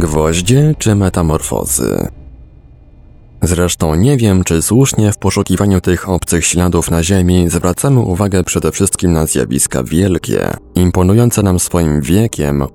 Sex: male